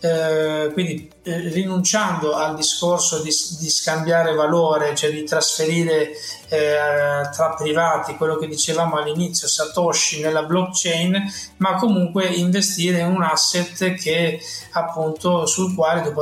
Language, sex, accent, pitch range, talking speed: Italian, male, native, 155-175 Hz, 120 wpm